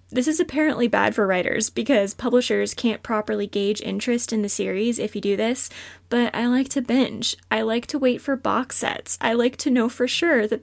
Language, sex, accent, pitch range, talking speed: English, female, American, 210-255 Hz, 215 wpm